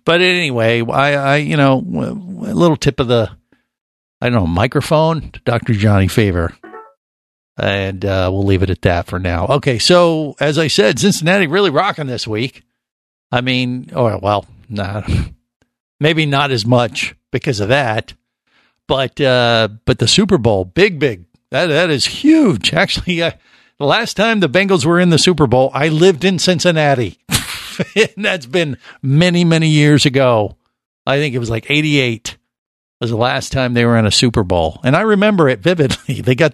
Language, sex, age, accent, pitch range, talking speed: English, male, 60-79, American, 110-150 Hz, 180 wpm